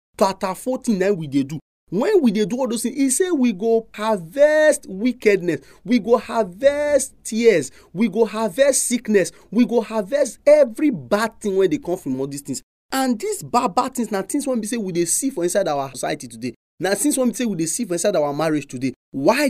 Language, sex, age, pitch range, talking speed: English, male, 30-49, 190-260 Hz, 220 wpm